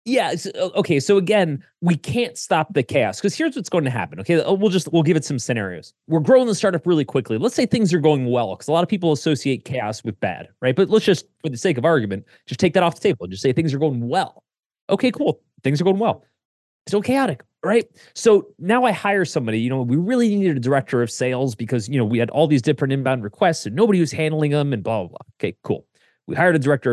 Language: English